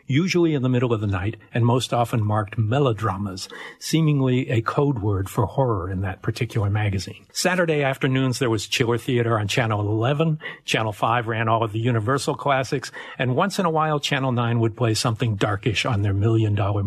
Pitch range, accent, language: 110-140 Hz, American, English